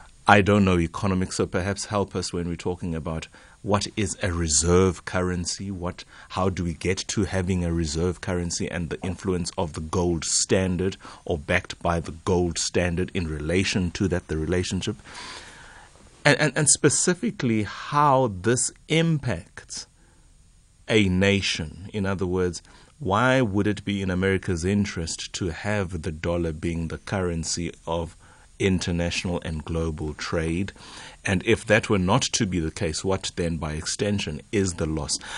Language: English